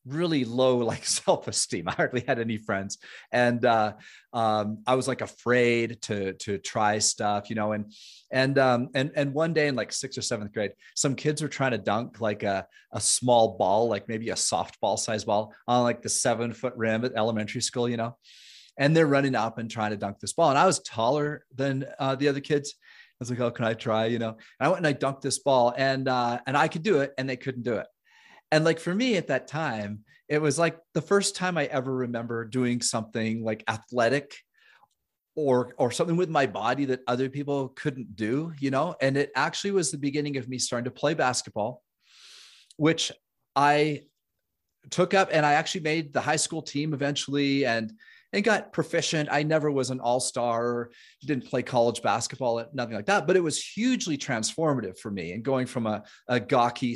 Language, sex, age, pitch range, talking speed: English, male, 30-49, 115-145 Hz, 210 wpm